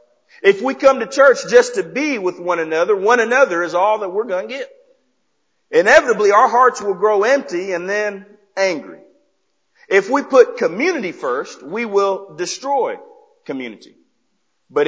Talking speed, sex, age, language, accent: 155 wpm, male, 40-59, English, American